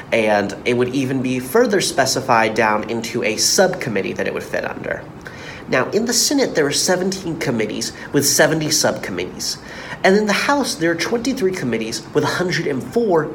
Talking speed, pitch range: 165 wpm, 115-180 Hz